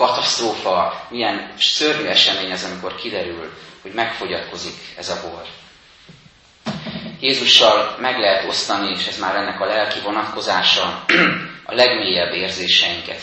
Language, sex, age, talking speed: Hungarian, male, 30-49, 120 wpm